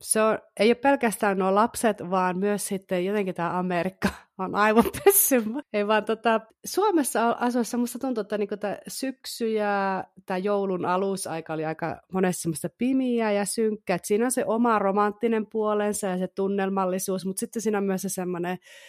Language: Finnish